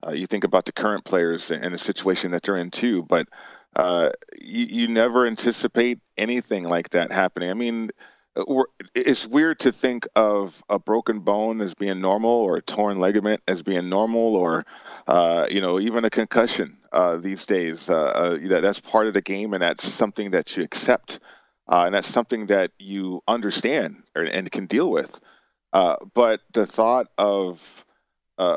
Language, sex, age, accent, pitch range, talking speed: English, male, 40-59, American, 95-120 Hz, 175 wpm